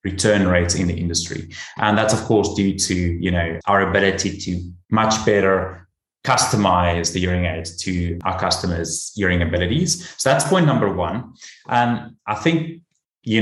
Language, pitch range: English, 95-110 Hz